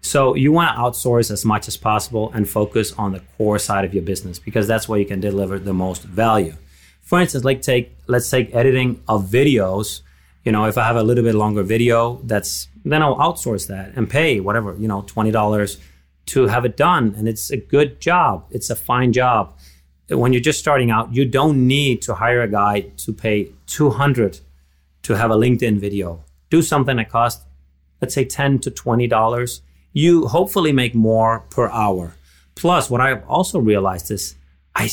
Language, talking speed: English, 190 wpm